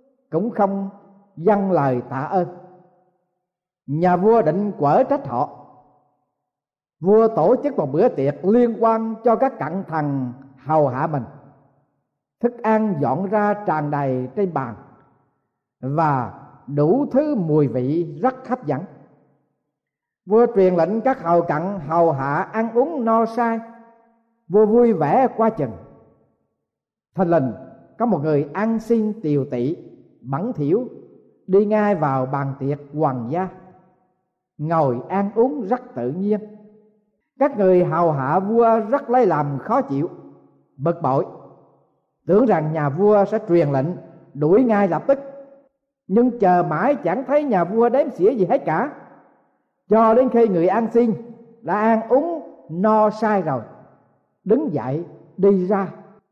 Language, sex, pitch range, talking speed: Vietnamese, male, 145-225 Hz, 145 wpm